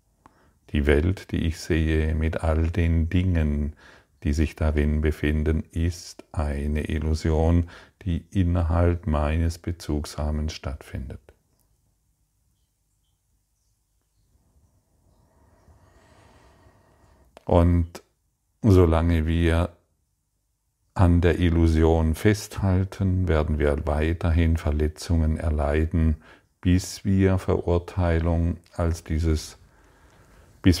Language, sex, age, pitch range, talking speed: German, male, 40-59, 80-95 Hz, 75 wpm